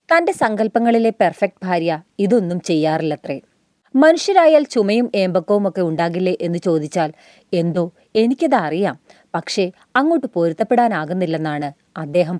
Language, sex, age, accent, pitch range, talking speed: Malayalam, female, 30-49, native, 175-255 Hz, 85 wpm